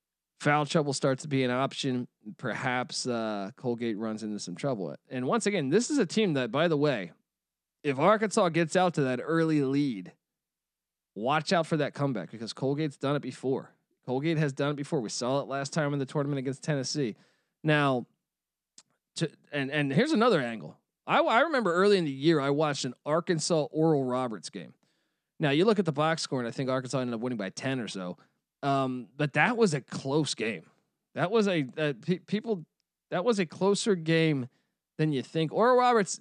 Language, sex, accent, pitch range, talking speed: English, male, American, 135-180 Hz, 200 wpm